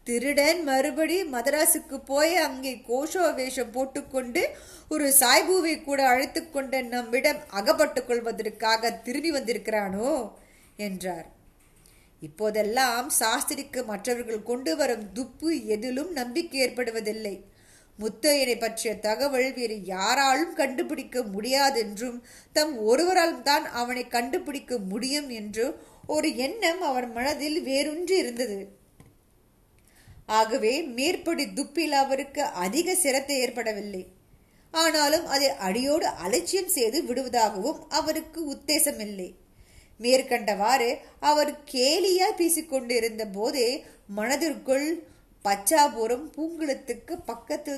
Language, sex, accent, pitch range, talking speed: Tamil, female, native, 225-305 Hz, 80 wpm